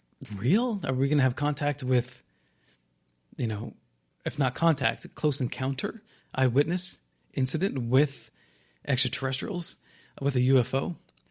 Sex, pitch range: male, 115-150 Hz